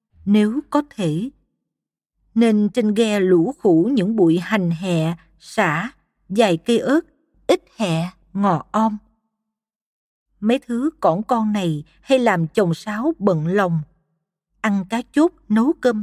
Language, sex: Vietnamese, female